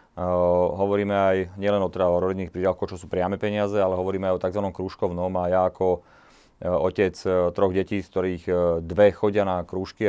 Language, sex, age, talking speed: Slovak, male, 30-49, 200 wpm